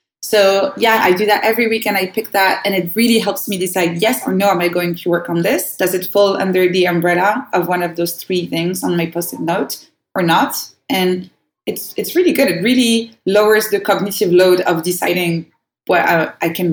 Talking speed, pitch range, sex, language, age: 220 wpm, 170-200 Hz, female, English, 20-39